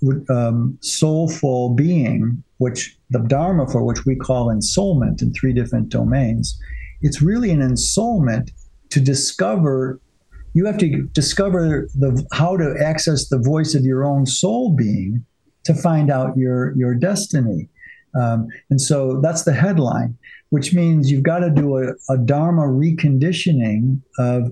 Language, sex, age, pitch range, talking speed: English, male, 50-69, 125-155 Hz, 145 wpm